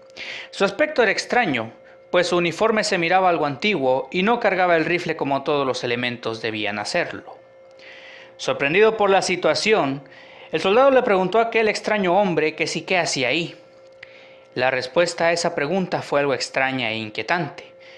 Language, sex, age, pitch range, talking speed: Spanish, male, 30-49, 150-220 Hz, 165 wpm